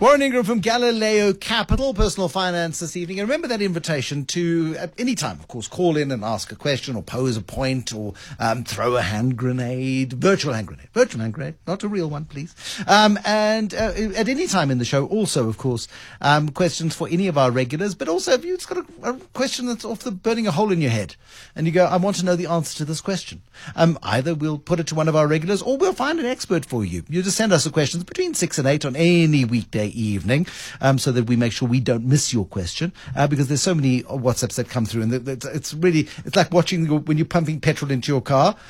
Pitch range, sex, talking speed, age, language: 125-180 Hz, male, 245 wpm, 60-79, English